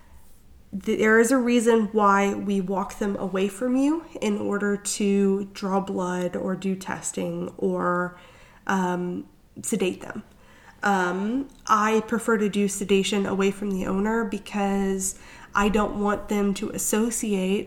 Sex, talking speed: female, 135 wpm